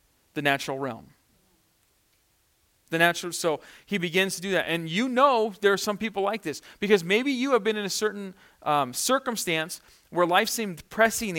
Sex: male